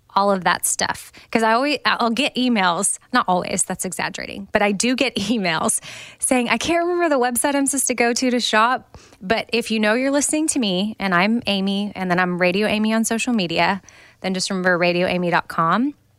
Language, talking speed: English, 205 wpm